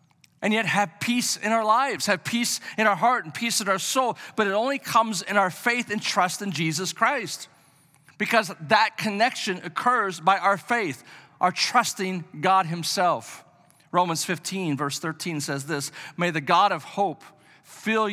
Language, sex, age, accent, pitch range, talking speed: English, male, 40-59, American, 150-205 Hz, 170 wpm